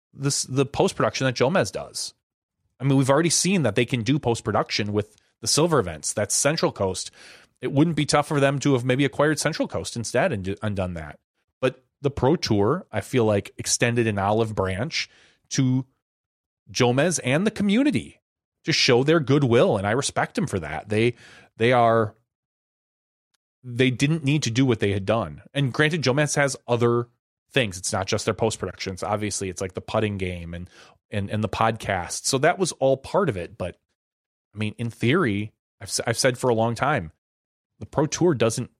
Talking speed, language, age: 185 wpm, English, 30-49